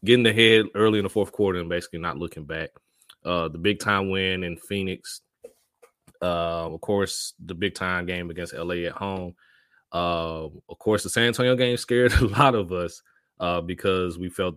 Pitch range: 85-95 Hz